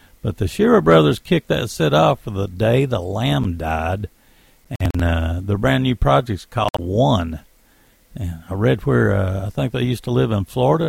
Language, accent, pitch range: English, American, 95-125 Hz